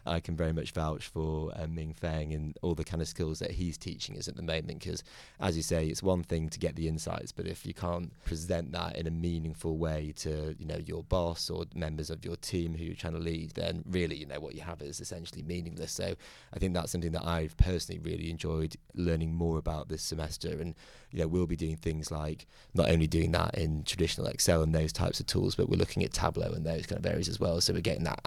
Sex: male